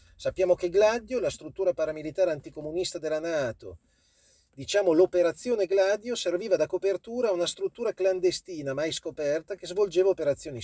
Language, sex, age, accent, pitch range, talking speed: Italian, male, 40-59, native, 135-185 Hz, 135 wpm